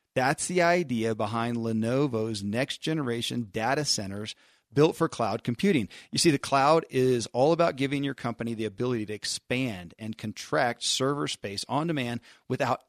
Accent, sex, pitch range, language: American, male, 115-145 Hz, English